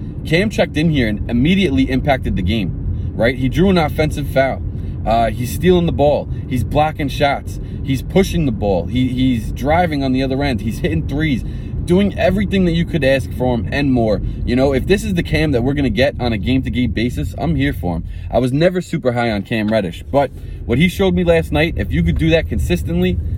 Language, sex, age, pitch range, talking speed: English, male, 20-39, 105-140 Hz, 230 wpm